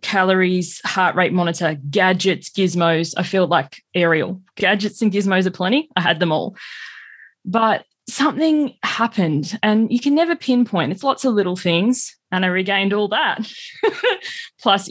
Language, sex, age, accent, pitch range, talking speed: English, female, 20-39, Australian, 170-220 Hz, 155 wpm